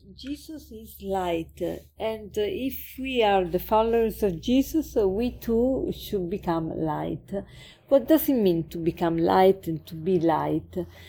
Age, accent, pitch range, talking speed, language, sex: 40-59, Italian, 180-215 Hz, 145 wpm, English, female